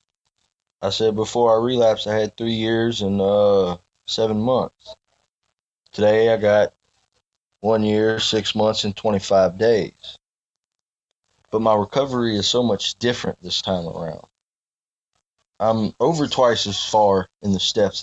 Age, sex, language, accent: 20-39, male, English, American